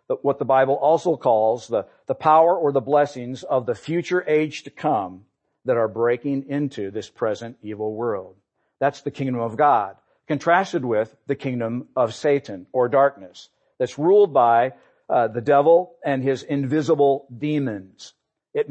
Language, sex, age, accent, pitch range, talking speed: English, male, 50-69, American, 130-175 Hz, 155 wpm